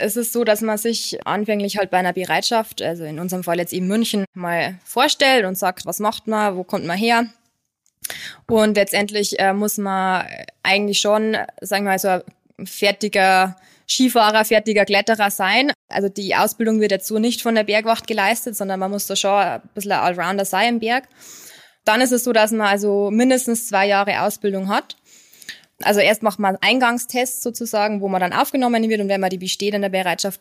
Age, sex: 20-39, female